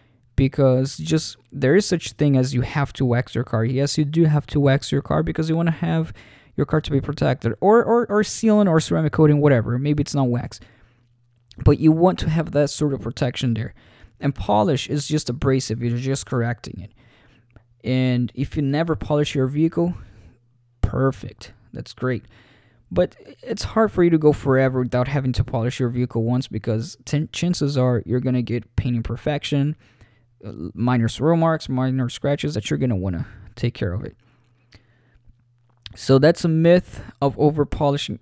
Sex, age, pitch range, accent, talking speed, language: male, 20-39, 120-145 Hz, American, 185 wpm, English